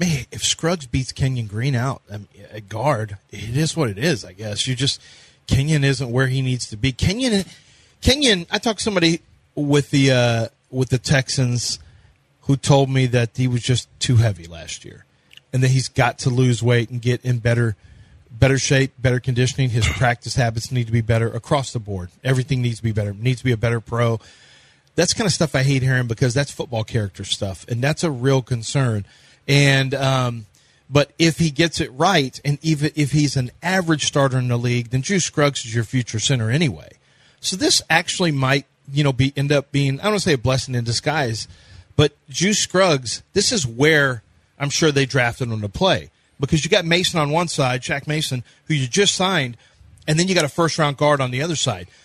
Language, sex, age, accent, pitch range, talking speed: English, male, 30-49, American, 120-150 Hz, 215 wpm